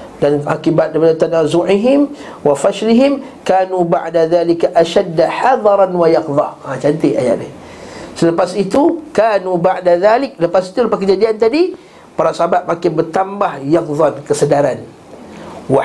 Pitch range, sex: 165-225 Hz, male